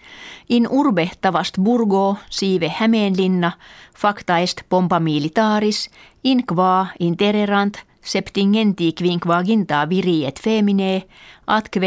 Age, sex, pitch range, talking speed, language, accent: 30-49, female, 175-215 Hz, 95 wpm, Italian, Finnish